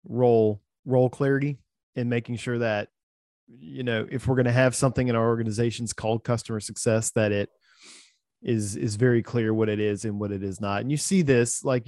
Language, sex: English, male